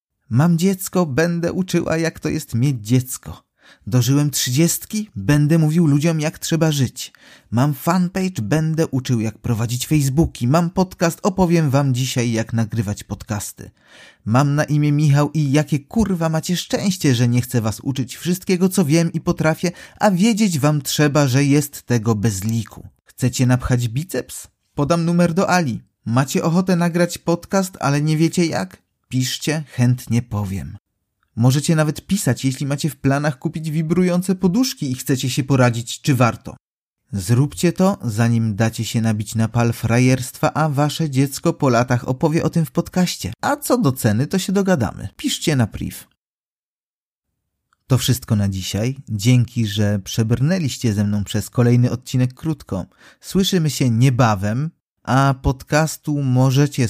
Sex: male